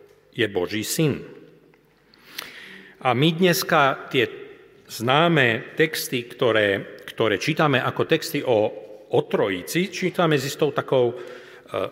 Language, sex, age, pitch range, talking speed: Slovak, male, 40-59, 110-145 Hz, 105 wpm